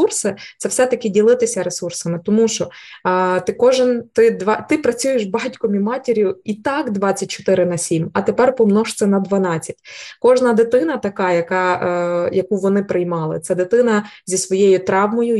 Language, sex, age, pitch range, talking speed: Ukrainian, female, 20-39, 180-210 Hz, 160 wpm